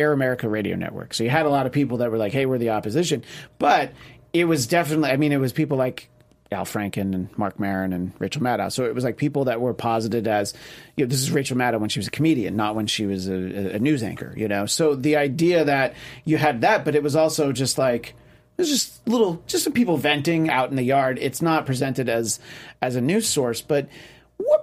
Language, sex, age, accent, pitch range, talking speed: English, male, 30-49, American, 115-150 Hz, 245 wpm